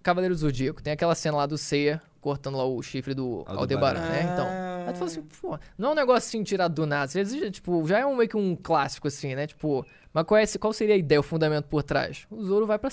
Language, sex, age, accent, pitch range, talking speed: Portuguese, male, 20-39, Brazilian, 150-200 Hz, 265 wpm